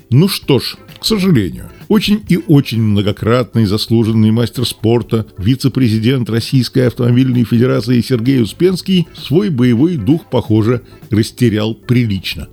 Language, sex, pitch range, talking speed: Russian, male, 110-160 Hz, 115 wpm